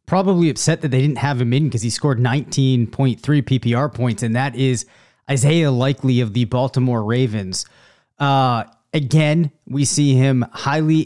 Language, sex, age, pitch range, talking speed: English, male, 30-49, 130-155 Hz, 155 wpm